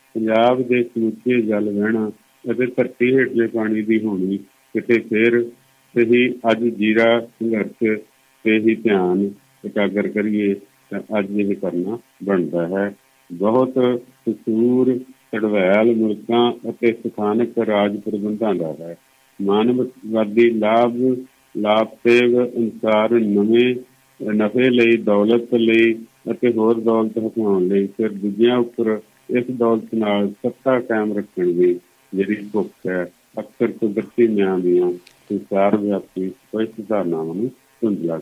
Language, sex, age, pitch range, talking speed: Punjabi, male, 50-69, 105-125 Hz, 130 wpm